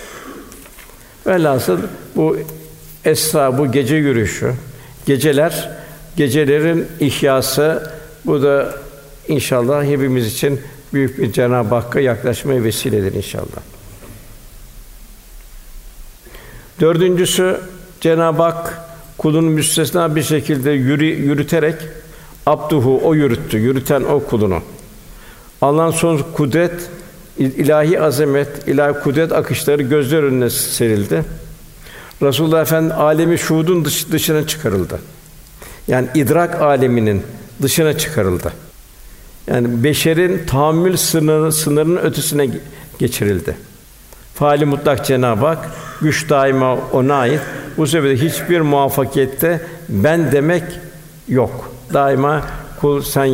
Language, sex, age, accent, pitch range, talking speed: Turkish, male, 60-79, native, 130-160 Hz, 90 wpm